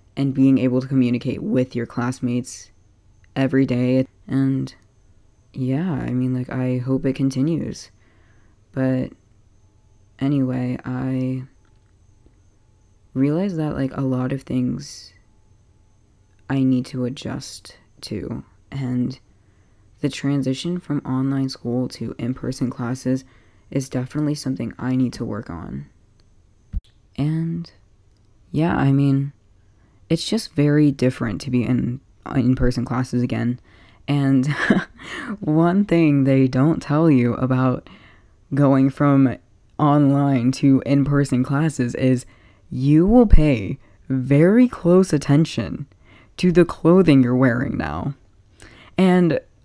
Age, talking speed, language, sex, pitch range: 20-39, 115 wpm, English, female, 105-140 Hz